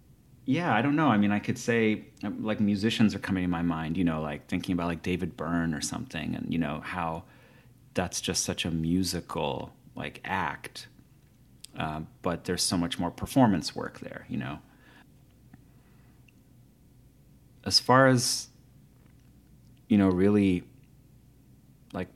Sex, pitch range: male, 85-105 Hz